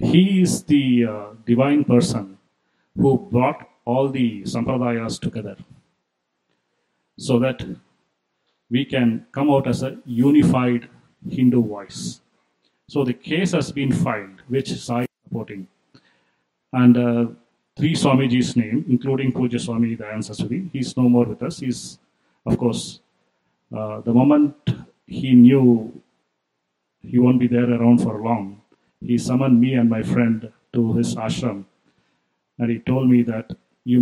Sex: male